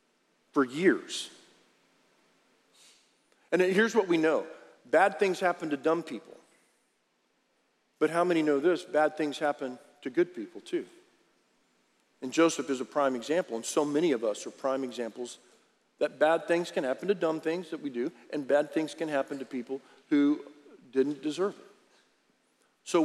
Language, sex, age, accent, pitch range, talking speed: English, male, 50-69, American, 130-175 Hz, 160 wpm